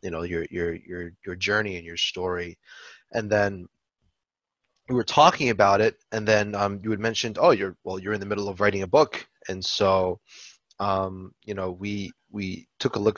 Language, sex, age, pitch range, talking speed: English, male, 20-39, 95-115 Hz, 200 wpm